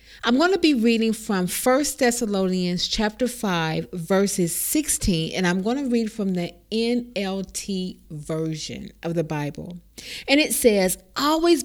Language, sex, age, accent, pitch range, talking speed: English, female, 40-59, American, 185-250 Hz, 145 wpm